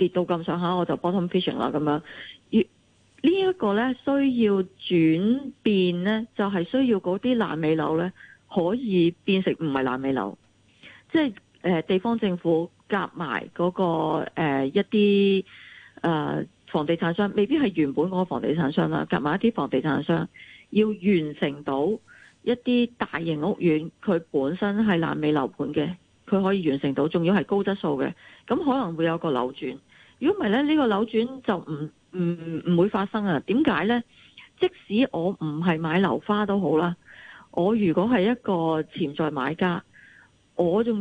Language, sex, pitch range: Chinese, female, 160-215 Hz